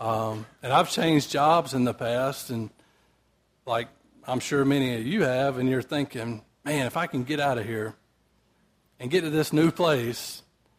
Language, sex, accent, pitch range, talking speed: English, male, American, 120-145 Hz, 185 wpm